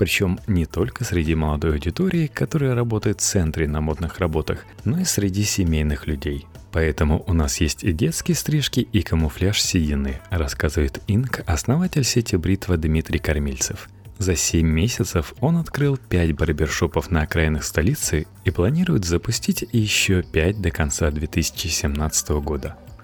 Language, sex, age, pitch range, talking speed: Russian, male, 30-49, 80-115 Hz, 140 wpm